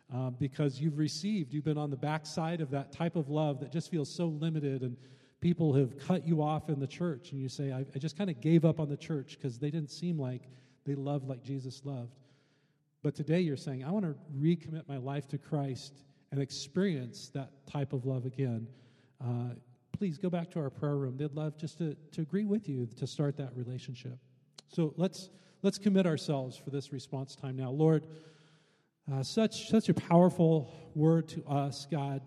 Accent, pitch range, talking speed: American, 135-160 Hz, 205 wpm